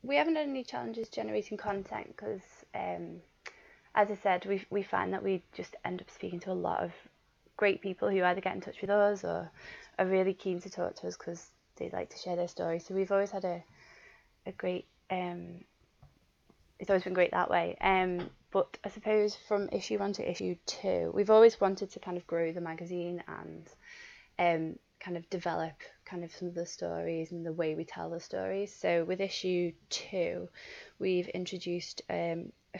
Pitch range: 170-195 Hz